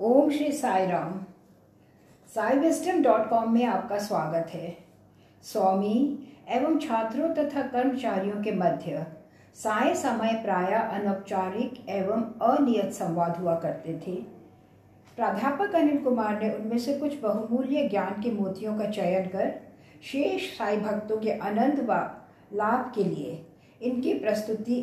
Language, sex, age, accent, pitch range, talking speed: English, female, 60-79, Indian, 190-250 Hz, 125 wpm